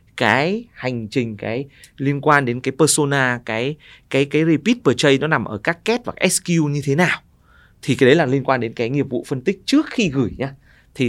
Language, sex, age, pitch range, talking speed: Vietnamese, male, 20-39, 120-170 Hz, 220 wpm